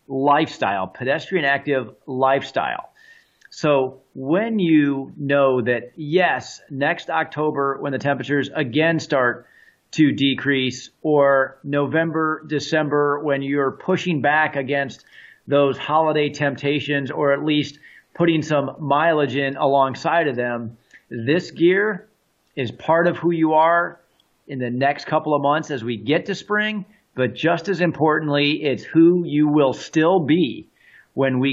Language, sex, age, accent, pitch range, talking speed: English, male, 40-59, American, 125-155 Hz, 135 wpm